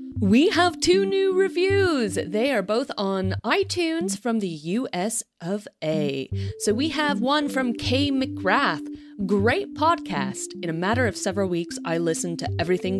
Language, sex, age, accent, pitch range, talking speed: English, female, 30-49, American, 160-270 Hz, 155 wpm